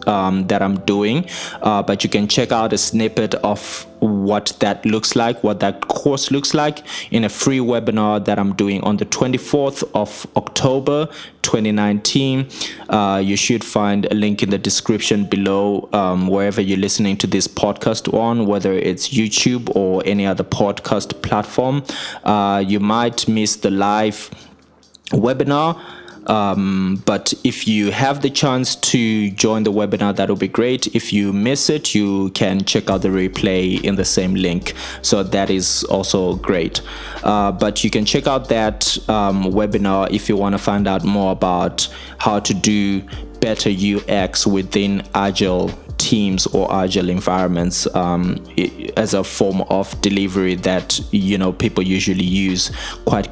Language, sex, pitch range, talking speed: English, male, 95-115 Hz, 160 wpm